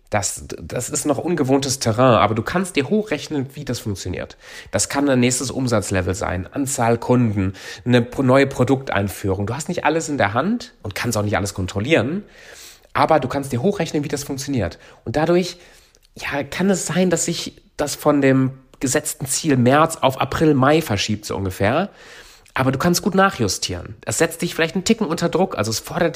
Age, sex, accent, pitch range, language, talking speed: 30-49, male, German, 110-160 Hz, German, 190 wpm